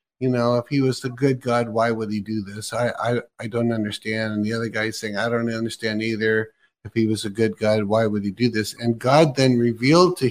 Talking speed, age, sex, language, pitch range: 250 wpm, 50-69, male, English, 110-150 Hz